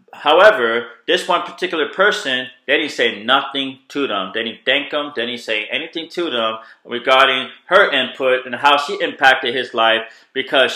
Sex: male